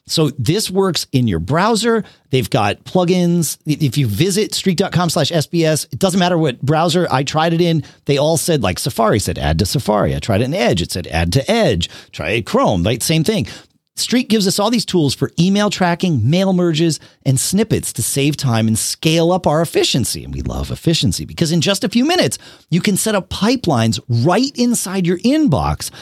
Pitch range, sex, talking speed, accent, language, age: 115-180 Hz, male, 205 wpm, American, English, 40-59